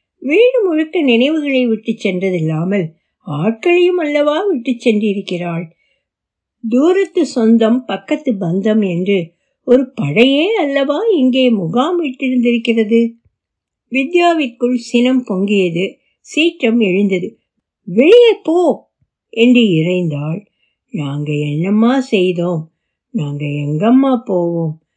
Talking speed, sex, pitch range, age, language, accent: 80 wpm, female, 190-295 Hz, 60-79, Tamil, native